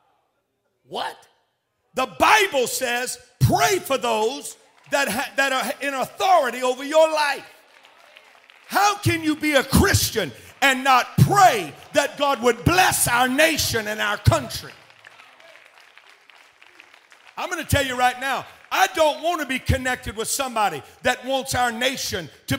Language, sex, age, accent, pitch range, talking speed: English, male, 50-69, American, 240-300 Hz, 140 wpm